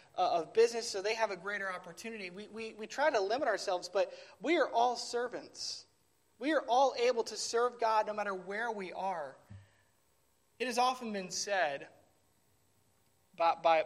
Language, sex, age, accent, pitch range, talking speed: English, male, 20-39, American, 155-220 Hz, 175 wpm